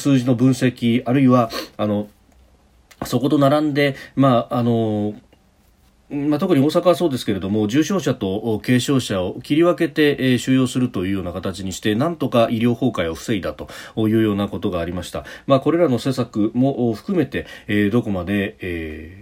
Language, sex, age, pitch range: Japanese, male, 40-59, 100-135 Hz